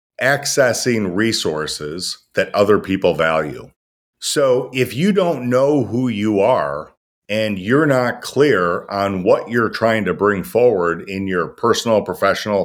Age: 40-59